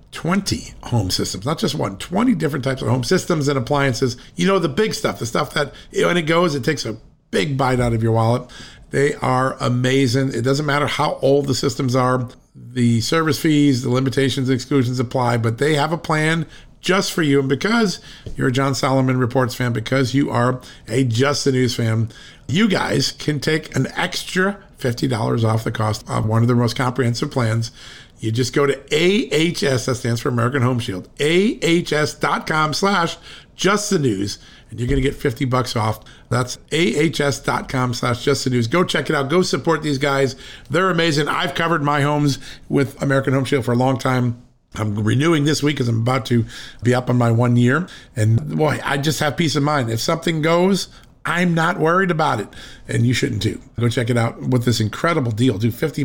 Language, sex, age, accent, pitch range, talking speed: English, male, 50-69, American, 125-155 Hz, 200 wpm